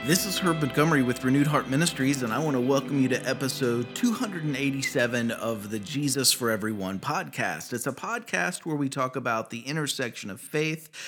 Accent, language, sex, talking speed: American, English, male, 185 wpm